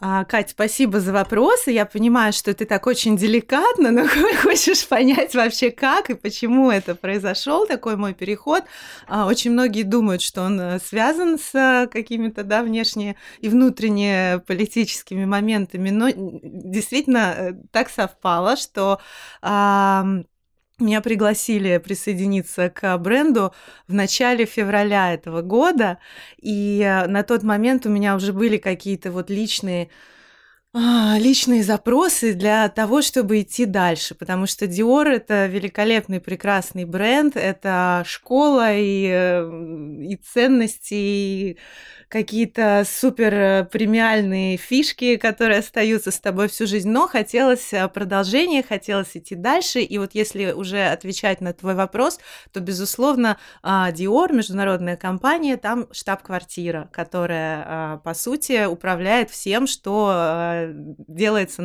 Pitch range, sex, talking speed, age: 185-235 Hz, female, 120 wpm, 20-39